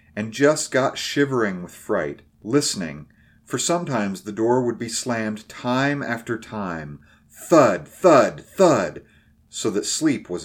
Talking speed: 140 wpm